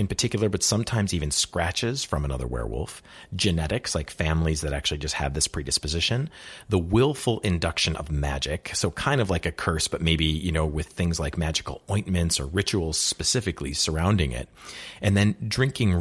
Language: English